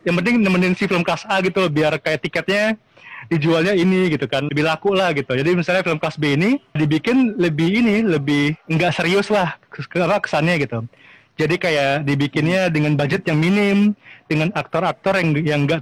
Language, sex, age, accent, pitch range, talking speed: Indonesian, male, 20-39, native, 150-190 Hz, 195 wpm